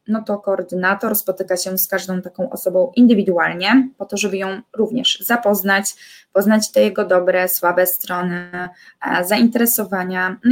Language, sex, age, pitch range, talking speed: Polish, female, 20-39, 185-225 Hz, 135 wpm